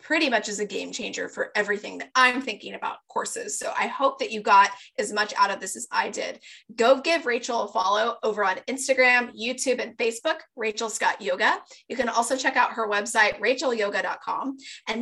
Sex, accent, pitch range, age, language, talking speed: female, American, 215-260 Hz, 20-39, English, 200 wpm